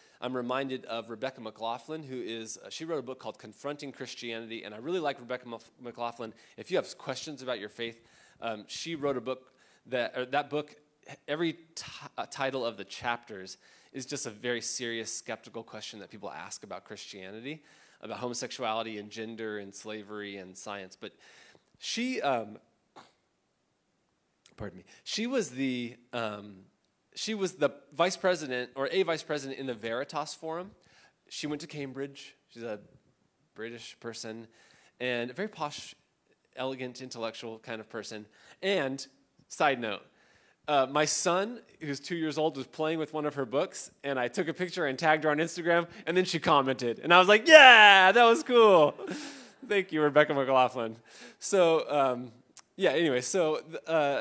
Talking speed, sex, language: 170 wpm, male, English